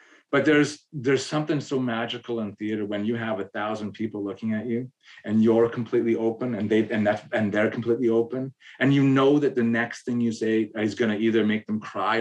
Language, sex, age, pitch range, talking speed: English, male, 30-49, 110-135 Hz, 215 wpm